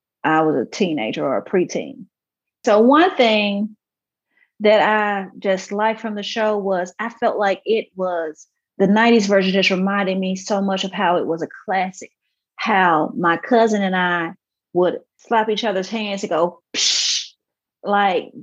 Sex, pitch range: female, 185-230 Hz